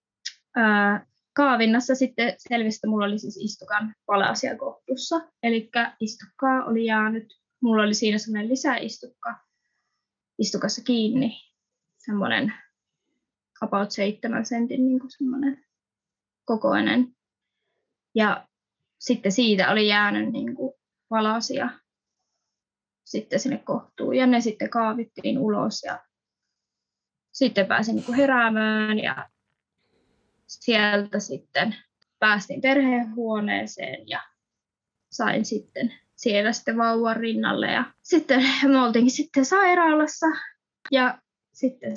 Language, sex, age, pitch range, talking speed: Finnish, female, 20-39, 215-260 Hz, 85 wpm